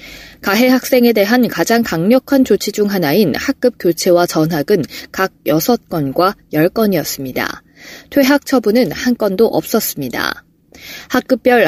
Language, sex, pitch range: Korean, female, 180-245 Hz